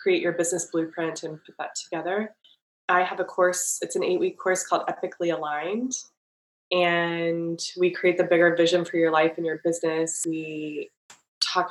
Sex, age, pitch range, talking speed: female, 20-39, 165-185 Hz, 175 wpm